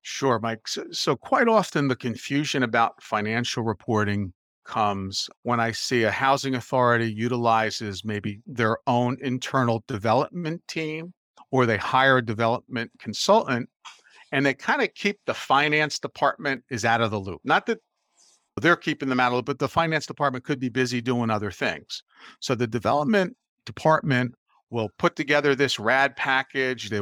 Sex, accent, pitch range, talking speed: male, American, 115-140 Hz, 165 wpm